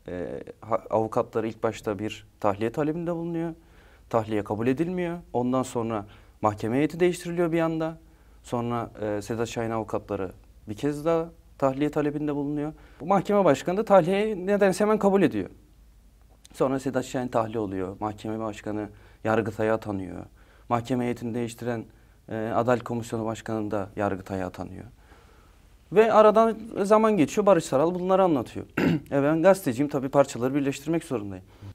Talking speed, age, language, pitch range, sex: 130 wpm, 40-59, Turkish, 105-145 Hz, male